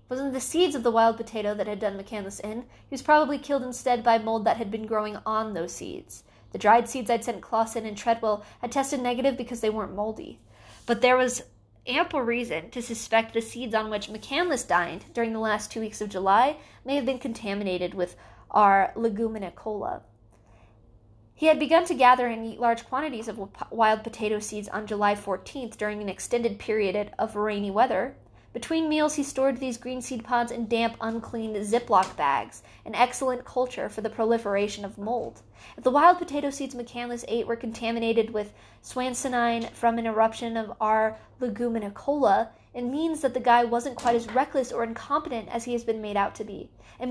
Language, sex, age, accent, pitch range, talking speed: English, female, 20-39, American, 215-250 Hz, 190 wpm